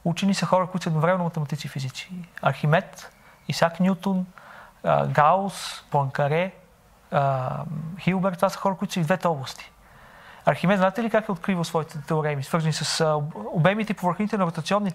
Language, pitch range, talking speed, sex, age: Bulgarian, 160-190 Hz, 150 wpm, male, 40-59